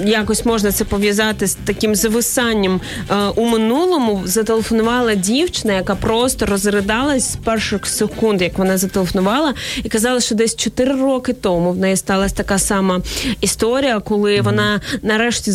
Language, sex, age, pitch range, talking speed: Ukrainian, female, 20-39, 200-235 Hz, 140 wpm